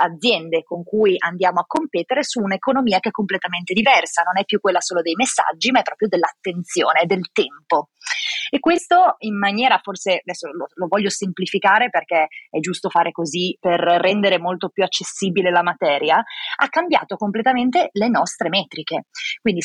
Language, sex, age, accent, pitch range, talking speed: Italian, female, 30-49, native, 180-225 Hz, 165 wpm